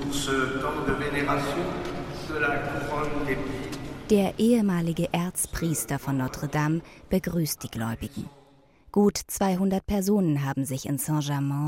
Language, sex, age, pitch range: German, female, 20-39, 145-185 Hz